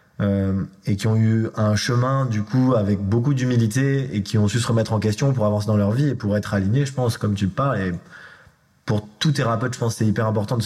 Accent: French